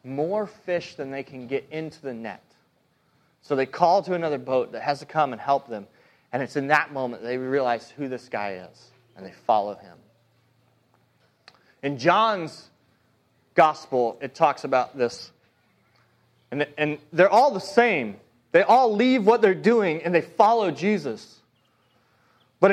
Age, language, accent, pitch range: 30-49, English, American, 140-220 Hz